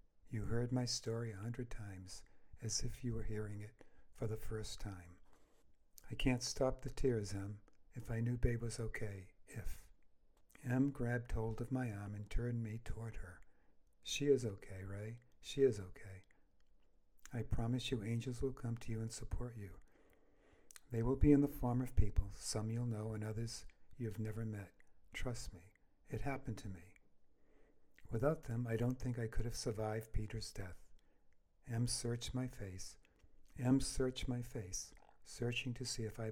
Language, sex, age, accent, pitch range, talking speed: English, male, 60-79, American, 105-125 Hz, 175 wpm